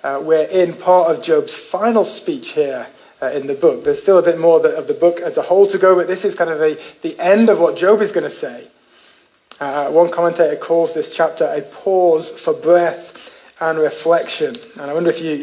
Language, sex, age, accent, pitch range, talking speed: English, male, 30-49, British, 155-200 Hz, 220 wpm